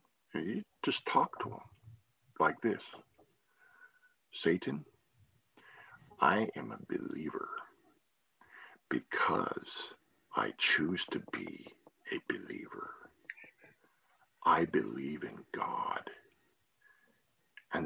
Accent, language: American, English